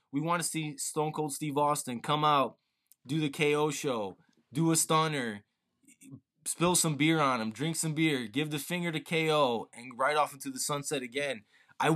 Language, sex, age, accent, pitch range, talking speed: English, male, 20-39, American, 135-160 Hz, 190 wpm